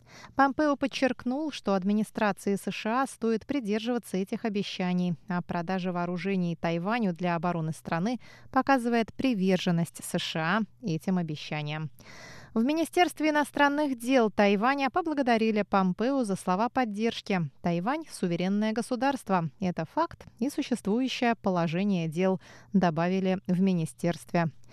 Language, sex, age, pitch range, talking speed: Russian, female, 20-39, 180-240 Hz, 105 wpm